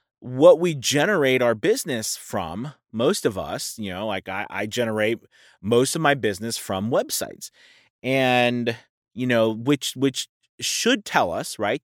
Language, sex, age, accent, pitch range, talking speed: English, male, 30-49, American, 115-155 Hz, 150 wpm